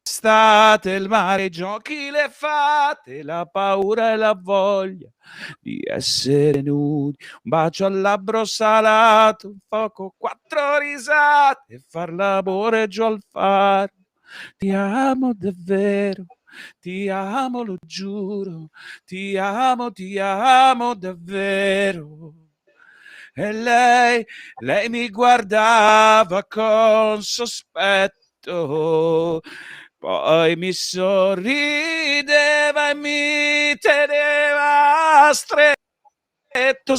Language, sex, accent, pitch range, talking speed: Italian, male, native, 195-270 Hz, 90 wpm